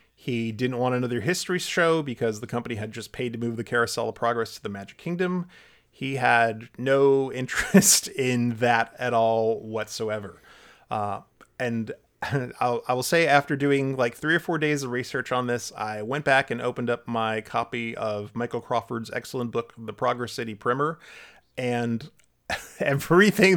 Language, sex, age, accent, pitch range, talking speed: English, male, 30-49, American, 115-140 Hz, 175 wpm